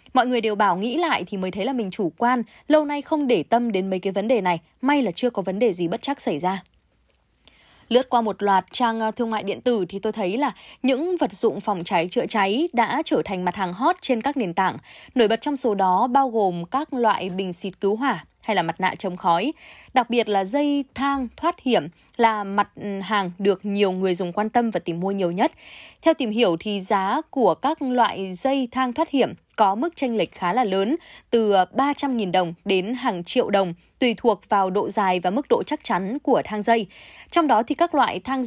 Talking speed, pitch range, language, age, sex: 235 wpm, 195-260 Hz, Vietnamese, 20-39, female